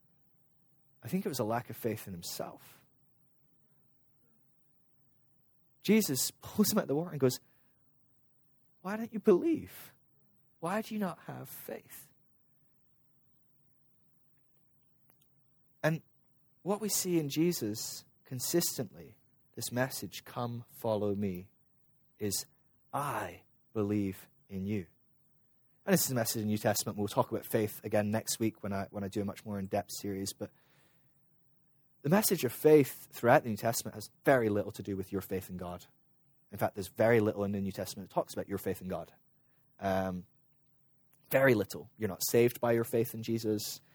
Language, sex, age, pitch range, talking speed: English, male, 30-49, 105-150 Hz, 160 wpm